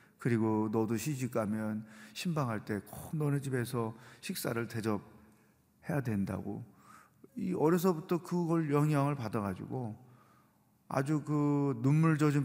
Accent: native